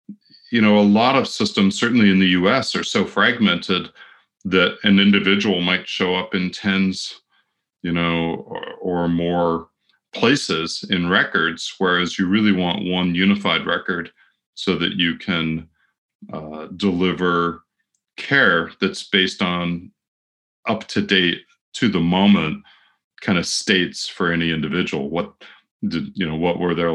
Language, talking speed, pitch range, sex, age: Finnish, 145 wpm, 80-95 Hz, male, 40-59